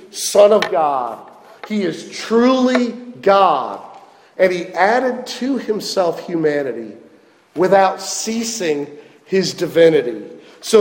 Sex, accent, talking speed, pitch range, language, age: male, American, 100 wpm, 185-260 Hz, English, 50-69